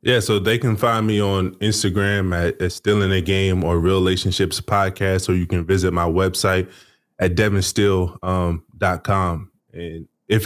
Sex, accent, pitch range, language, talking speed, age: male, American, 90-105 Hz, English, 160 wpm, 20-39